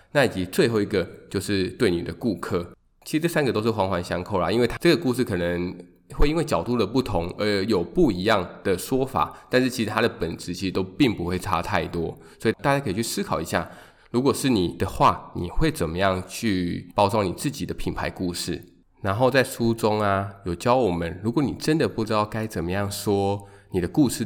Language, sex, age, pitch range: Chinese, male, 20-39, 90-110 Hz